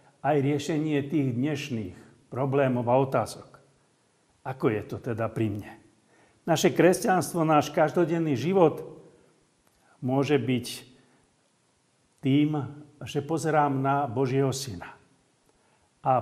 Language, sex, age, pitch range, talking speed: Slovak, male, 50-69, 125-160 Hz, 100 wpm